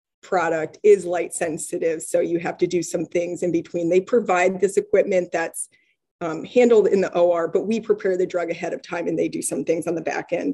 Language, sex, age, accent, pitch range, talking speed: English, female, 20-39, American, 175-210 Hz, 230 wpm